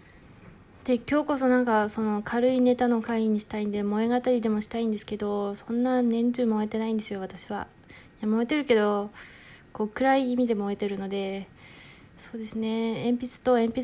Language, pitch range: Japanese, 205-250 Hz